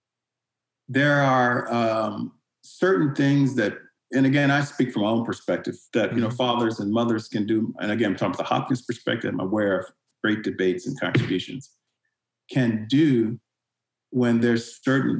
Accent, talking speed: American, 160 wpm